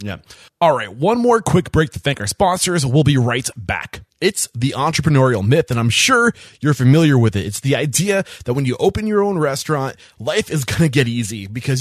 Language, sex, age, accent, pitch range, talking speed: English, male, 20-39, American, 115-160 Hz, 220 wpm